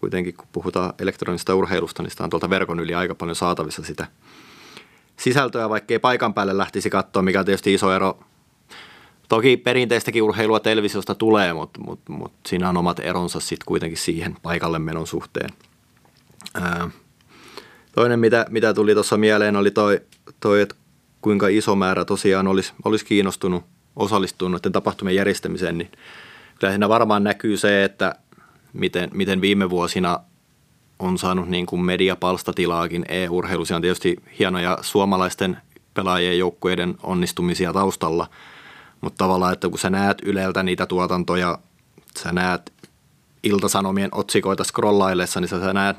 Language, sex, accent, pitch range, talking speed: Finnish, male, native, 90-105 Hz, 140 wpm